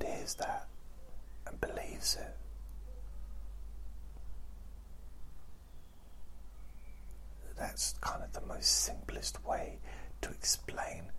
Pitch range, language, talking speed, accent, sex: 65-70 Hz, English, 75 wpm, British, male